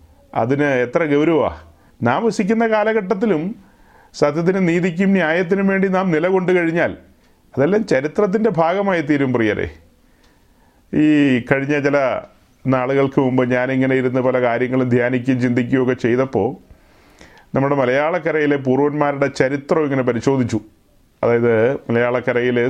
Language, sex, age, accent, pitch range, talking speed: Malayalam, male, 30-49, native, 125-165 Hz, 100 wpm